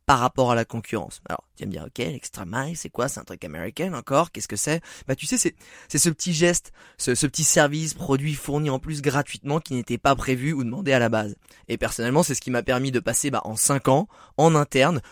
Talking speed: 255 wpm